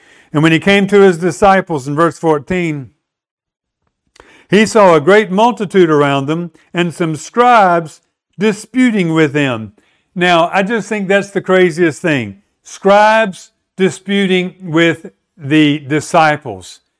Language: English